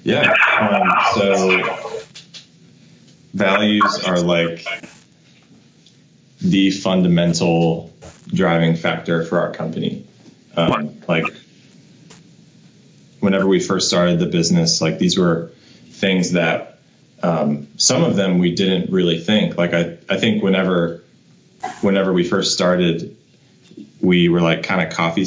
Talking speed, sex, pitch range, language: 115 wpm, male, 85-100 Hz, English